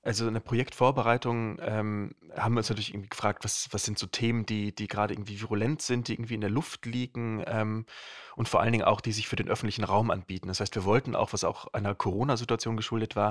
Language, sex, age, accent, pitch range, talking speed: German, male, 30-49, German, 105-120 Hz, 235 wpm